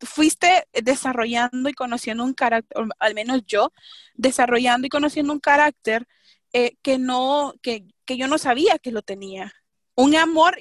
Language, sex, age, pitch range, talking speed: Spanish, female, 20-39, 245-305 Hz, 155 wpm